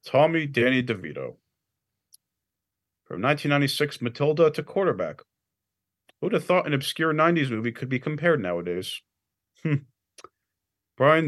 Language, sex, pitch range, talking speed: English, male, 105-155 Hz, 110 wpm